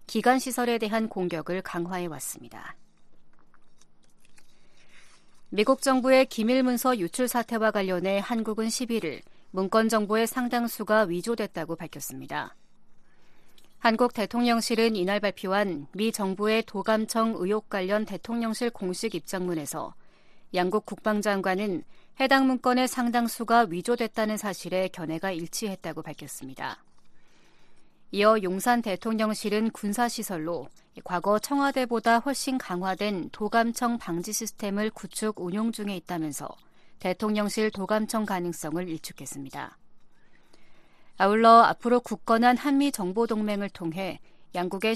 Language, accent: Korean, native